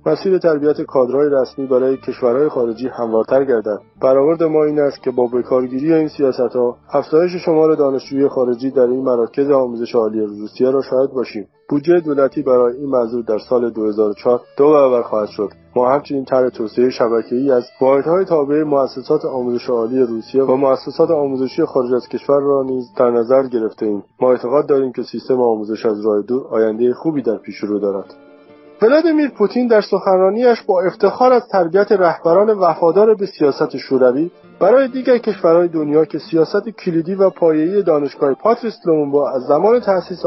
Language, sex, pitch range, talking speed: Persian, male, 125-175 Hz, 160 wpm